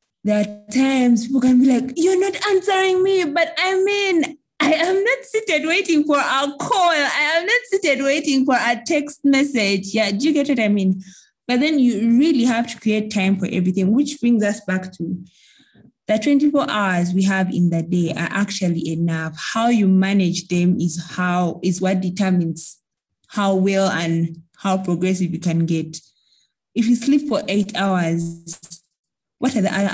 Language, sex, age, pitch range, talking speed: English, female, 20-39, 180-255 Hz, 180 wpm